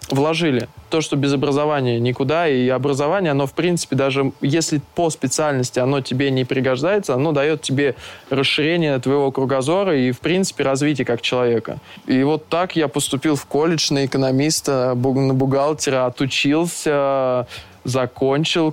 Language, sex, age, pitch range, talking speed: Russian, male, 20-39, 130-150 Hz, 140 wpm